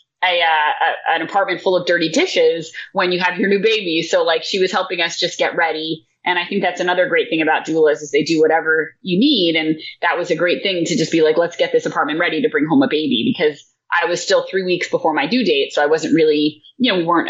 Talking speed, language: 265 wpm, English